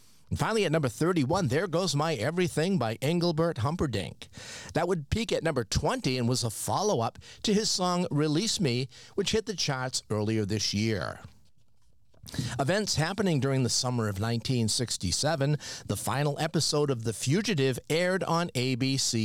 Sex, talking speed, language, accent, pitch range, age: male, 155 wpm, English, American, 120-170 Hz, 50-69